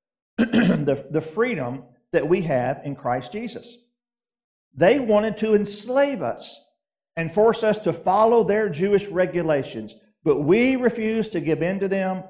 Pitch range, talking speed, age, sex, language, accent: 155-210 Hz, 145 wpm, 50-69, male, English, American